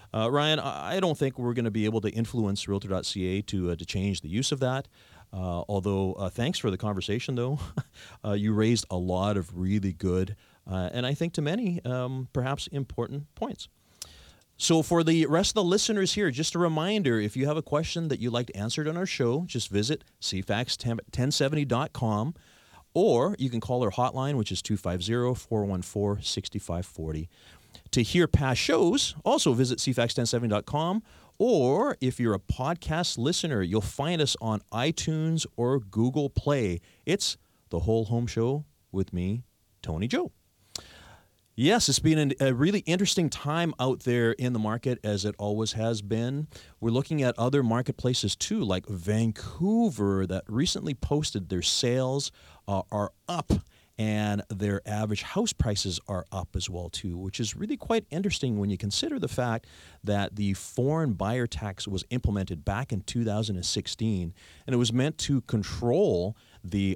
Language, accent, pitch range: English, American, 100-135 Hz